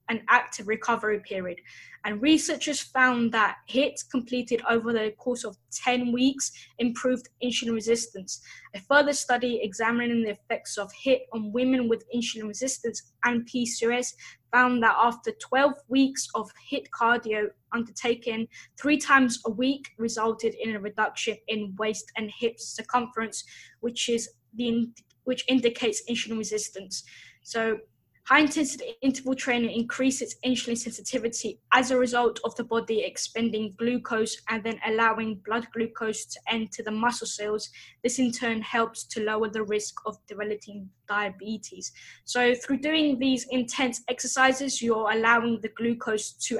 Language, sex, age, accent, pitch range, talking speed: English, female, 10-29, British, 220-245 Hz, 145 wpm